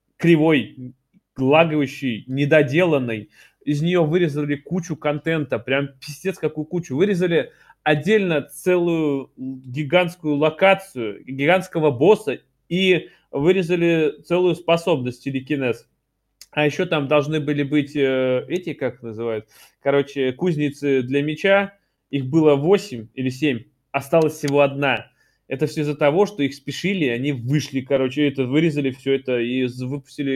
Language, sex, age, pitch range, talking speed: Russian, male, 20-39, 130-165 Hz, 125 wpm